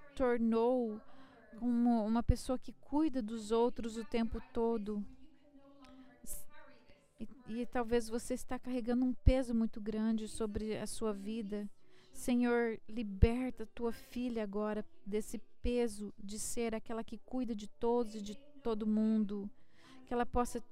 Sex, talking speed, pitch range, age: female, 135 wpm, 225-255 Hz, 40-59